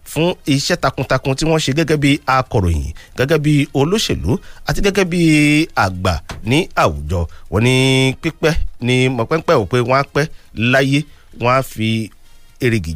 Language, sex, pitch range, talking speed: English, male, 100-145 Hz, 120 wpm